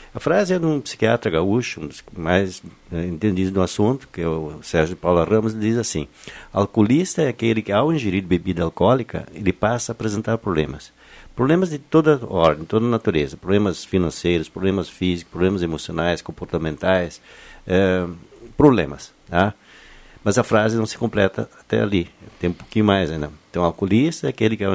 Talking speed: 170 wpm